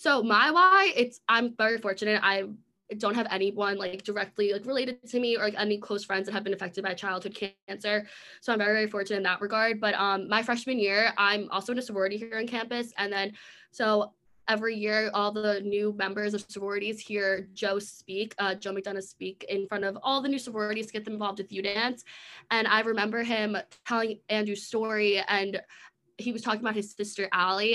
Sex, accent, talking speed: female, American, 210 wpm